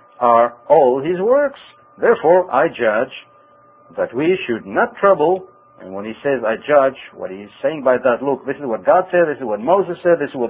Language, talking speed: English, 215 wpm